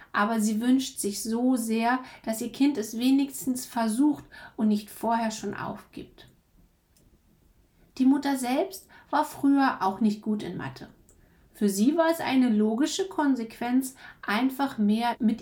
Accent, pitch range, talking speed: German, 220-290 Hz, 145 wpm